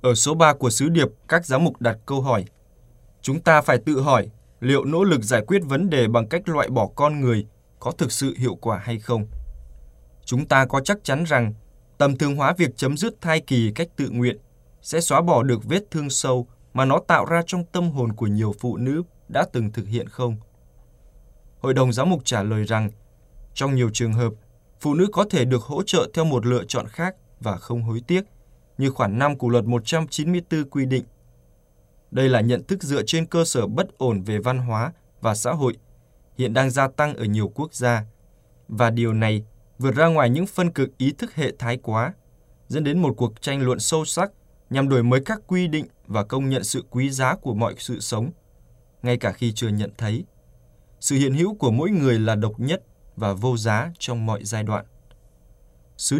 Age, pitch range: 20-39, 110-150 Hz